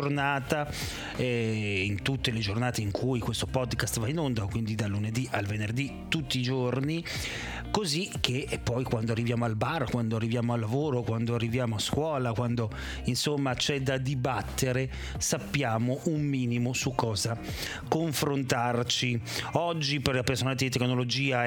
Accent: native